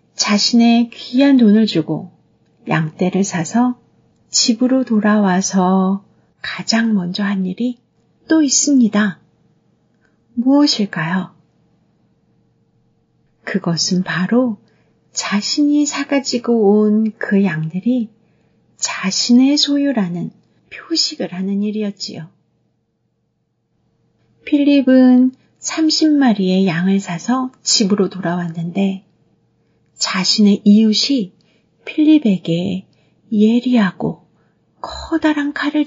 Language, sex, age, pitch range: Korean, female, 40-59, 180-250 Hz